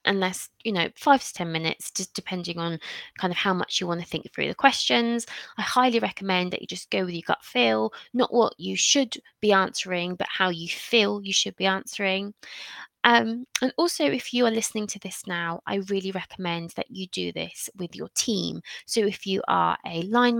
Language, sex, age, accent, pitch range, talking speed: English, female, 20-39, British, 175-230 Hz, 210 wpm